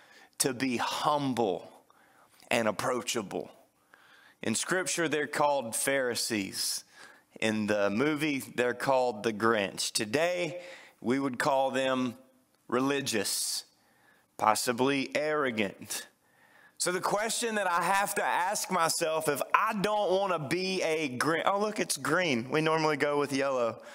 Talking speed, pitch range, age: 125 wpm, 120-160 Hz, 30-49